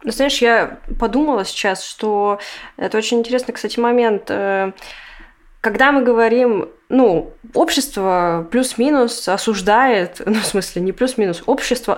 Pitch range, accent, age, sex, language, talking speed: 185-230 Hz, native, 20-39, female, Russian, 120 wpm